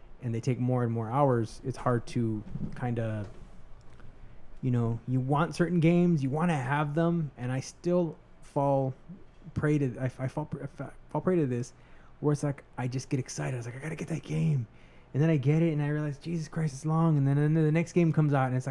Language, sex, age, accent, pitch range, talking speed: English, male, 20-39, American, 115-145 Hz, 240 wpm